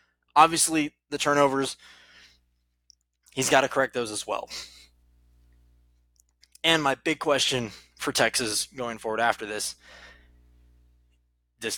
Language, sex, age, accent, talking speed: English, male, 20-39, American, 105 wpm